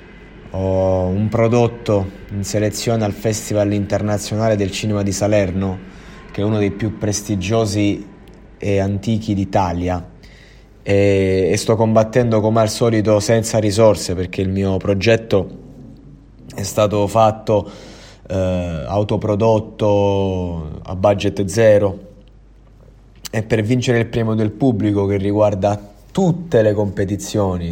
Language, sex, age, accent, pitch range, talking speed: Italian, male, 20-39, native, 100-110 Hz, 115 wpm